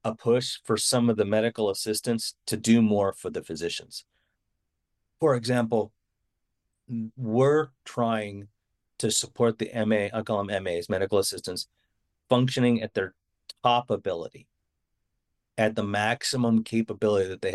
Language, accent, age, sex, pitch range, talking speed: English, American, 40-59, male, 95-115 Hz, 135 wpm